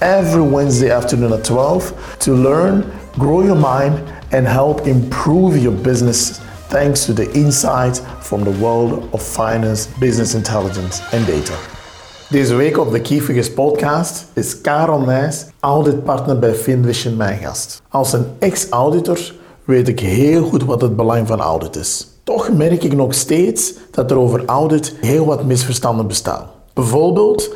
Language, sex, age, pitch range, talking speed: Dutch, male, 50-69, 115-150 Hz, 150 wpm